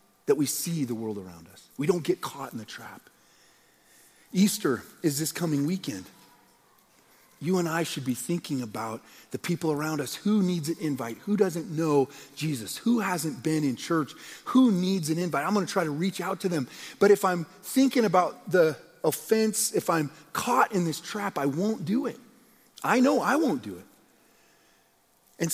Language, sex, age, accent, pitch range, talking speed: English, male, 40-59, American, 120-180 Hz, 190 wpm